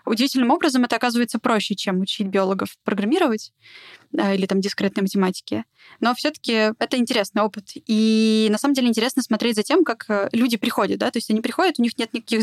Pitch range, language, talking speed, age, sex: 210-250 Hz, Russian, 180 wpm, 20-39, female